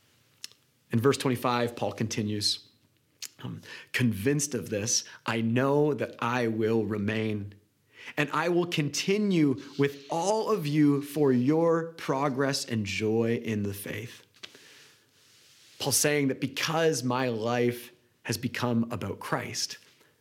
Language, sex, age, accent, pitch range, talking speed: English, male, 30-49, American, 120-150 Hz, 120 wpm